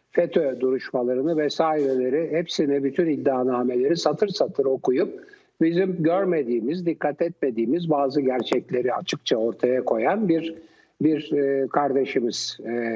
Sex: male